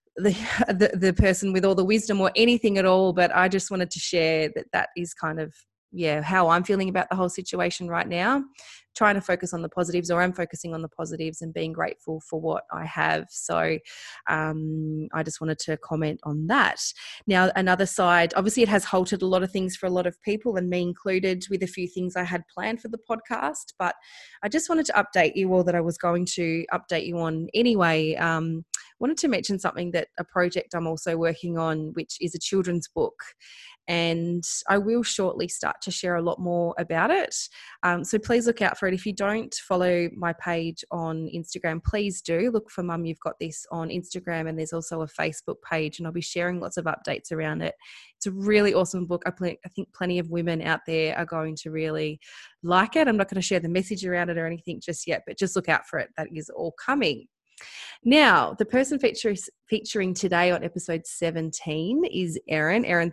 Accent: Australian